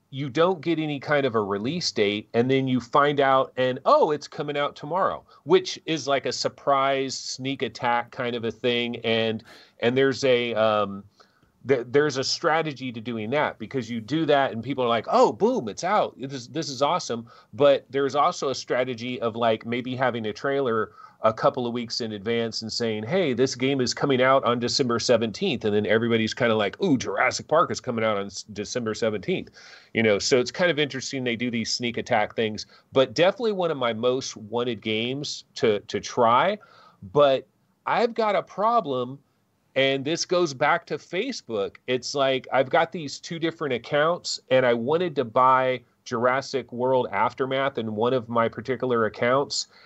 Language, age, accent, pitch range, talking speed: English, 40-59, American, 115-140 Hz, 195 wpm